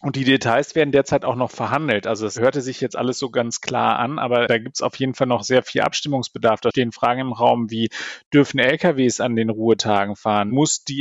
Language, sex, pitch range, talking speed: German, male, 115-135 Hz, 235 wpm